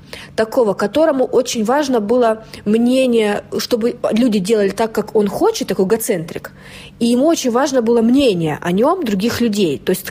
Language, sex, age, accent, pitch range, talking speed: Russian, female, 30-49, native, 205-245 Hz, 160 wpm